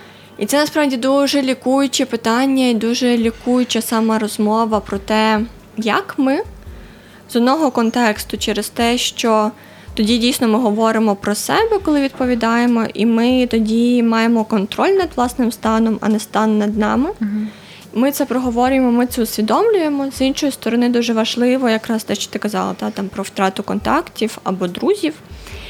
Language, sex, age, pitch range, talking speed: Ukrainian, female, 20-39, 215-255 Hz, 150 wpm